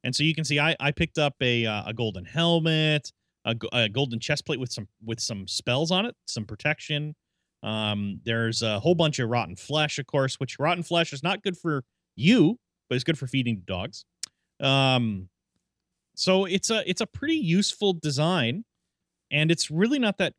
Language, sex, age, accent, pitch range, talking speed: English, male, 30-49, American, 115-165 Hz, 195 wpm